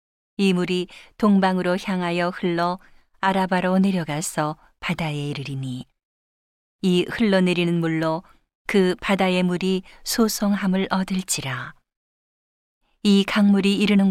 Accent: native